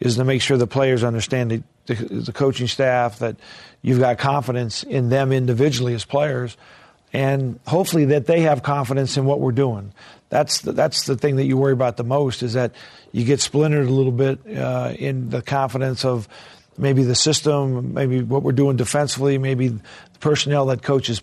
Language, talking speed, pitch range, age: English, 195 wpm, 120-140 Hz, 50-69